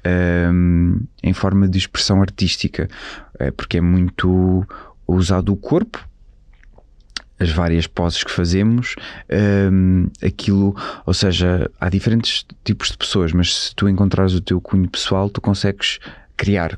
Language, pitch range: Portuguese, 85-100 Hz